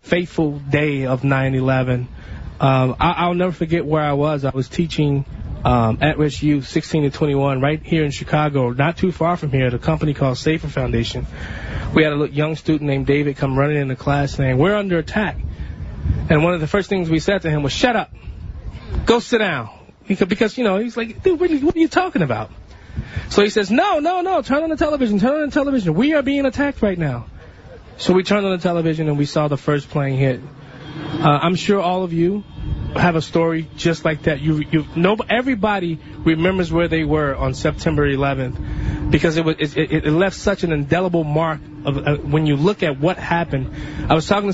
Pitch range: 140-180 Hz